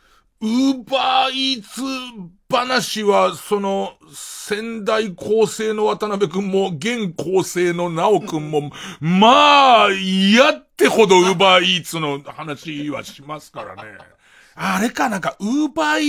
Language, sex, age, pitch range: Japanese, male, 40-59, 155-250 Hz